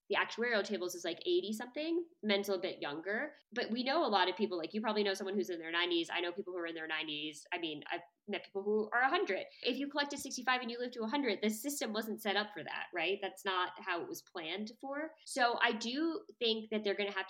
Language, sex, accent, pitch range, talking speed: English, female, American, 180-245 Hz, 265 wpm